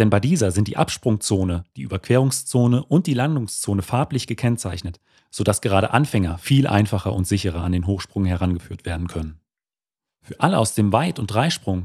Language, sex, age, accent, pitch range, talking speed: German, male, 30-49, German, 95-125 Hz, 165 wpm